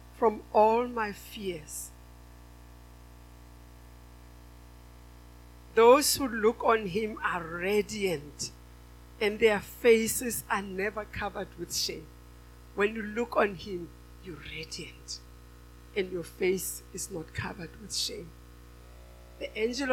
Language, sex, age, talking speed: English, female, 60-79, 110 wpm